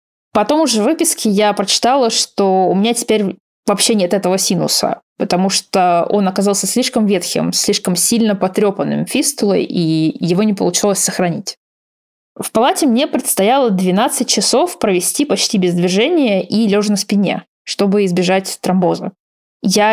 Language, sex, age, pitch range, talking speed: Russian, female, 20-39, 185-225 Hz, 140 wpm